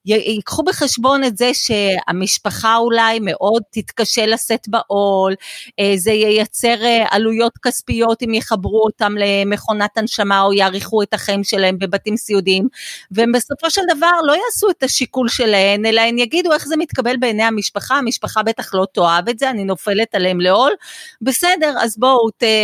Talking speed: 150 wpm